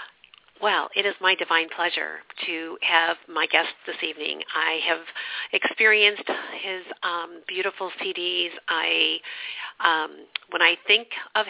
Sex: female